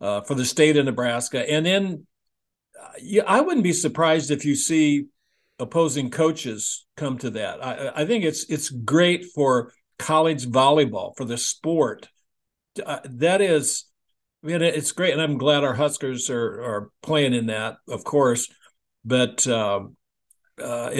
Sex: male